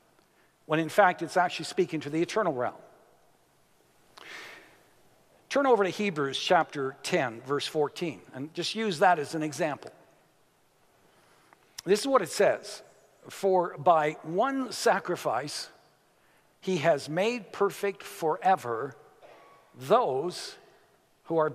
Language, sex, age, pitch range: English, male, 60-79, 155-205 Hz